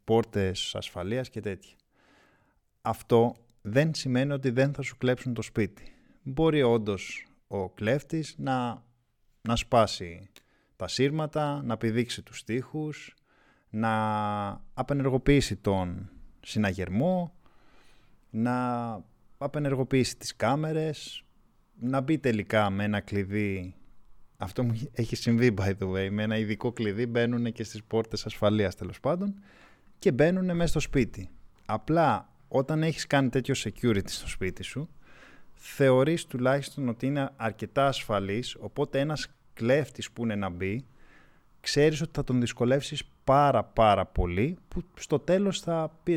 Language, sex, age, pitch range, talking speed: Greek, male, 20-39, 105-140 Hz, 130 wpm